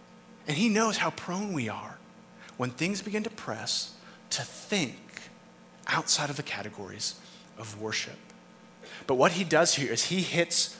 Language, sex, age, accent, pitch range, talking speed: English, male, 30-49, American, 120-180 Hz, 155 wpm